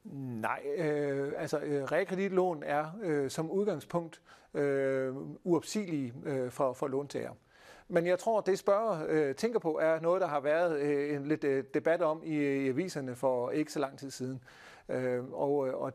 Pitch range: 135-165 Hz